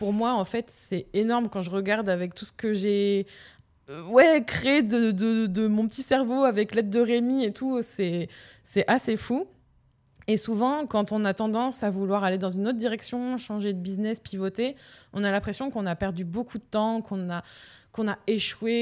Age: 20-39